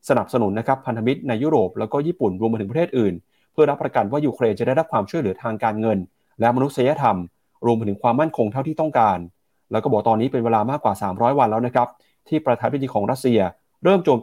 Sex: male